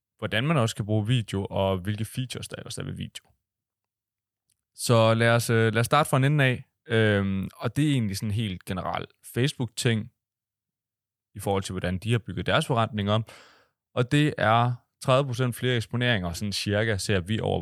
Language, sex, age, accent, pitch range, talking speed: Danish, male, 20-39, native, 95-120 Hz, 180 wpm